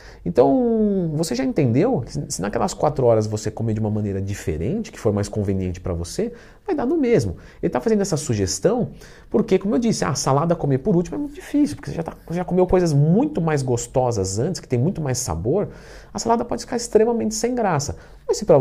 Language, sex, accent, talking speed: Portuguese, male, Brazilian, 215 wpm